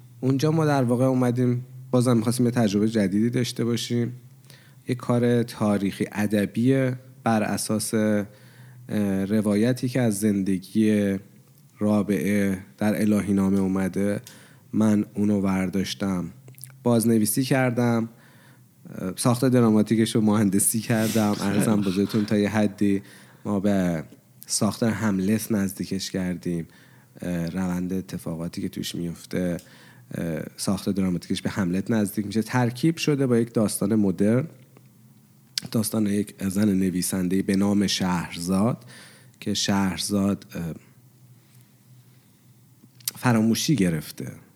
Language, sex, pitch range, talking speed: Persian, male, 95-120 Hz, 100 wpm